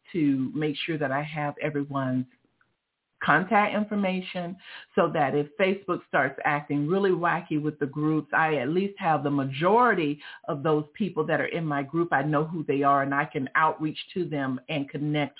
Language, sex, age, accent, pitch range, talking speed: English, female, 50-69, American, 150-195 Hz, 185 wpm